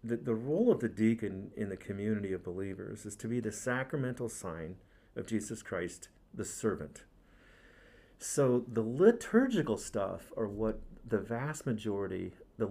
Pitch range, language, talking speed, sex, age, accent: 100-120 Hz, English, 150 wpm, male, 50-69, American